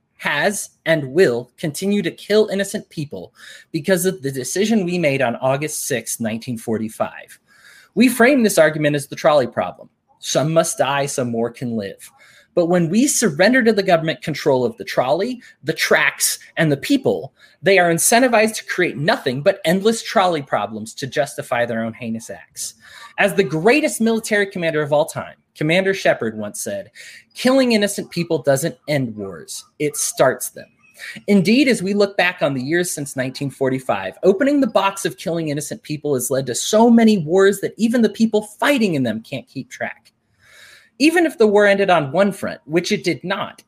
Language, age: English, 30-49